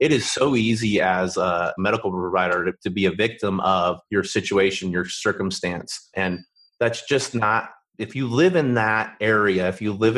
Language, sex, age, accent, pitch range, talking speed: English, male, 30-49, American, 95-125 Hz, 175 wpm